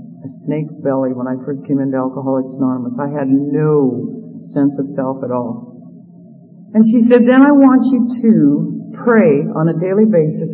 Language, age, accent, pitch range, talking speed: English, 50-69, American, 150-220 Hz, 175 wpm